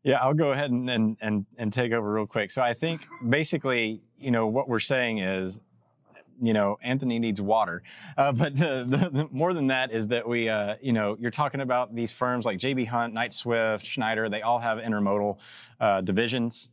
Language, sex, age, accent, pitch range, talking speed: English, male, 30-49, American, 105-125 Hz, 210 wpm